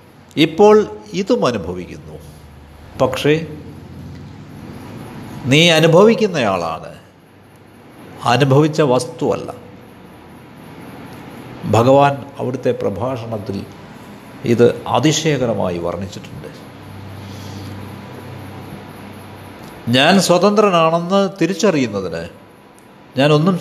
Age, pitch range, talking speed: 60-79, 110-175 Hz, 45 wpm